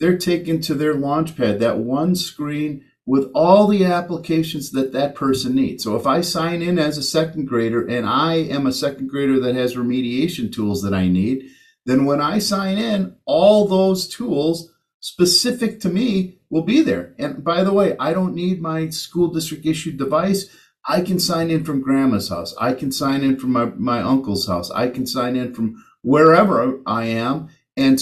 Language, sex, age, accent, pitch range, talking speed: English, male, 50-69, American, 130-170 Hz, 195 wpm